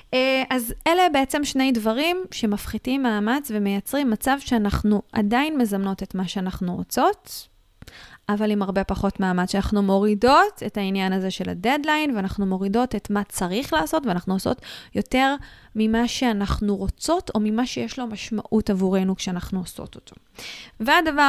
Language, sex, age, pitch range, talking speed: Hebrew, female, 20-39, 210-280 Hz, 140 wpm